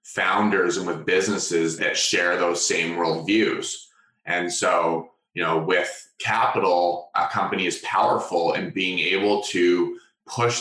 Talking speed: 135 wpm